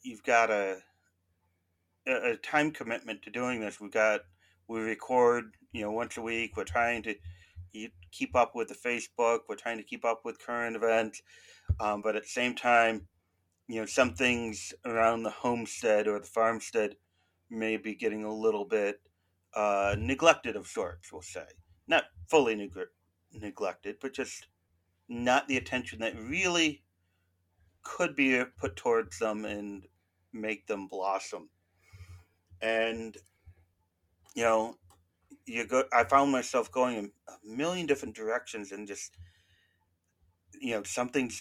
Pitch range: 90-115 Hz